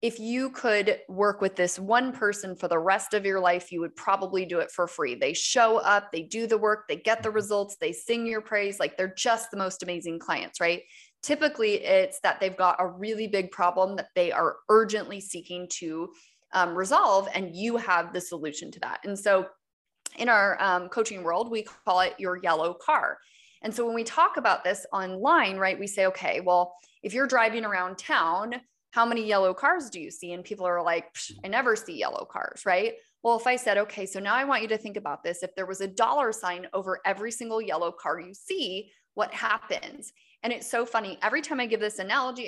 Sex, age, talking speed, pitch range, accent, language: female, 20-39, 220 wpm, 180-235 Hz, American, English